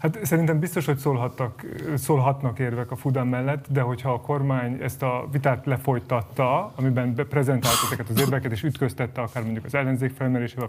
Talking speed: 165 wpm